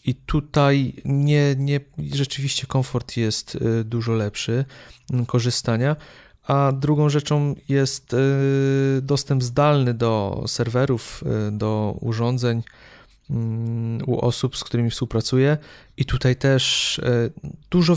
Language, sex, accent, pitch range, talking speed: Polish, male, native, 120-155 Hz, 90 wpm